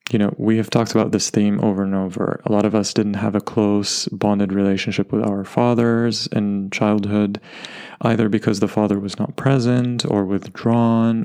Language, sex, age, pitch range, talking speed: English, male, 20-39, 100-110 Hz, 185 wpm